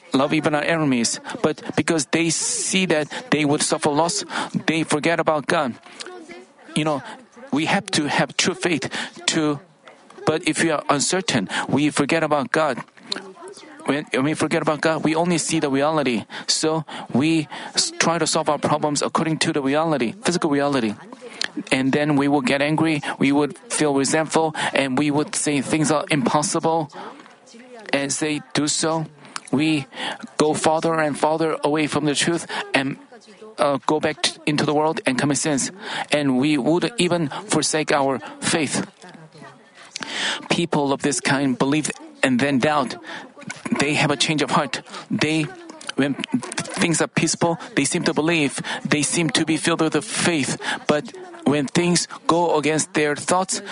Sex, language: male, Korean